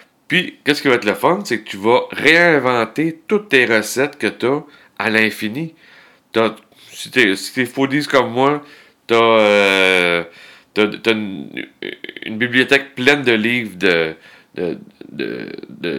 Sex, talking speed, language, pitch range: male, 160 wpm, French, 100-125 Hz